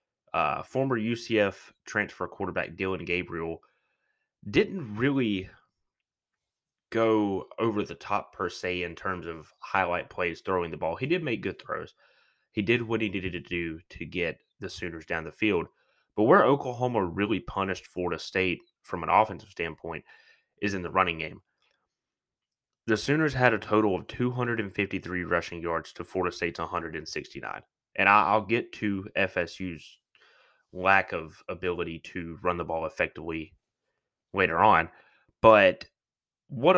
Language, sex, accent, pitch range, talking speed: English, male, American, 85-110 Hz, 145 wpm